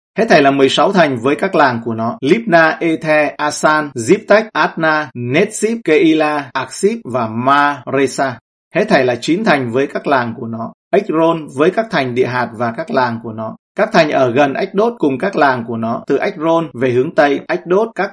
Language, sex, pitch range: Vietnamese, male, 130-170 Hz